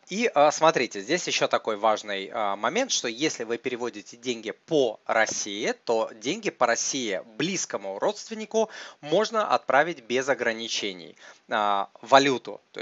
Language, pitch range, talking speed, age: Russian, 110-175 Hz, 120 wpm, 20-39